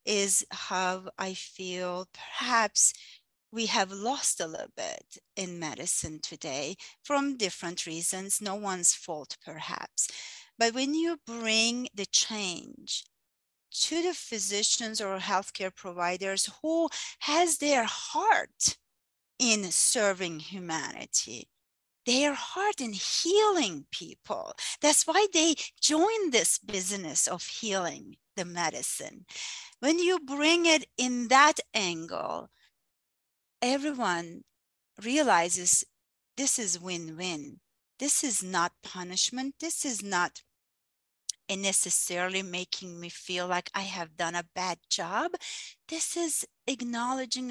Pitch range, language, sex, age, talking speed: 180-265 Hz, English, female, 40-59, 110 wpm